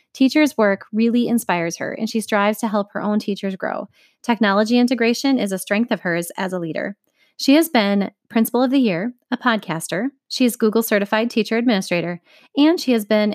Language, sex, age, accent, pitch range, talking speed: English, female, 30-49, American, 185-230 Hz, 190 wpm